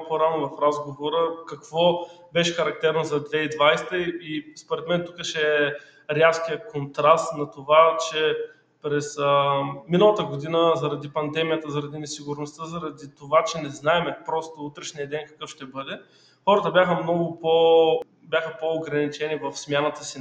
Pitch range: 150-175 Hz